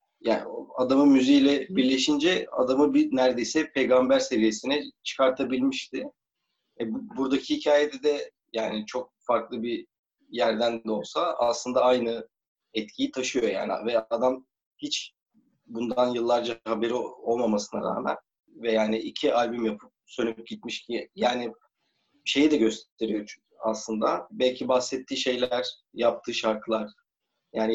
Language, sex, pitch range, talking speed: Turkish, male, 115-140 Hz, 115 wpm